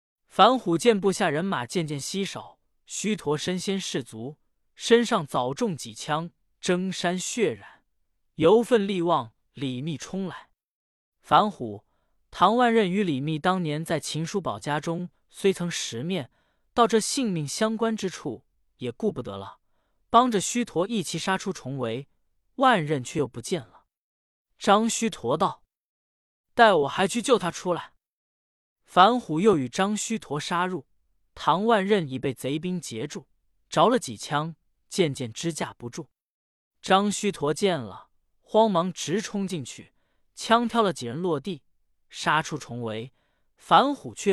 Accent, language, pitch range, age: native, Chinese, 130-200 Hz, 20-39